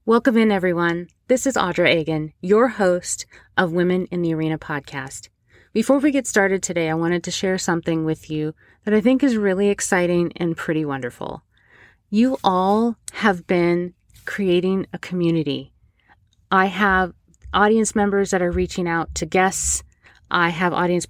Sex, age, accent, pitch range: female, 30-49, American, 160-195 Hz